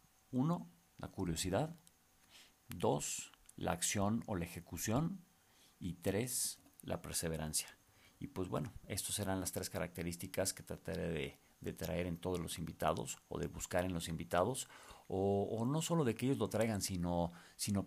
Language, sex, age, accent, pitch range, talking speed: Spanish, male, 50-69, Mexican, 85-105 Hz, 160 wpm